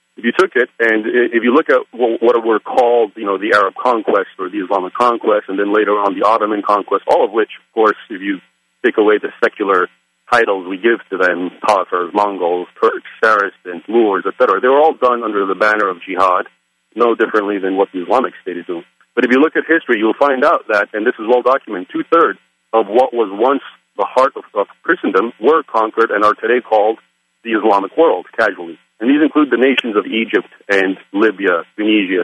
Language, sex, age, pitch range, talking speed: English, male, 40-59, 95-125 Hz, 205 wpm